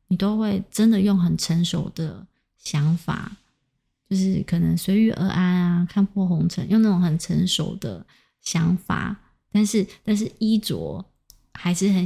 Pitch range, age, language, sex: 170-195 Hz, 20-39, Chinese, female